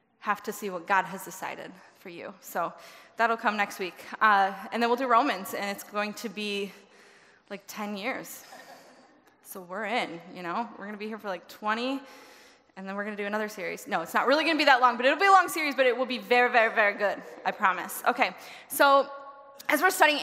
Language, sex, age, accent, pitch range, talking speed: English, female, 20-39, American, 200-260 Hz, 235 wpm